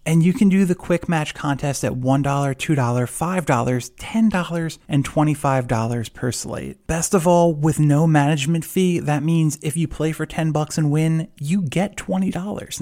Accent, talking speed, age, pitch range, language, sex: American, 170 wpm, 30-49, 125-165 Hz, English, male